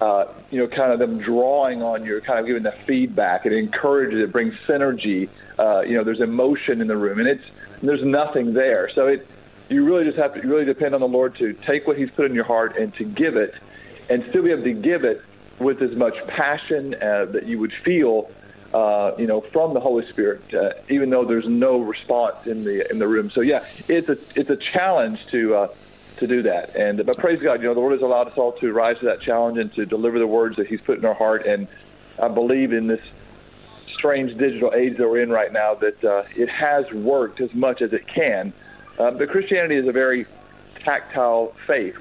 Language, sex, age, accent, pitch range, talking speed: English, male, 40-59, American, 115-140 Hz, 230 wpm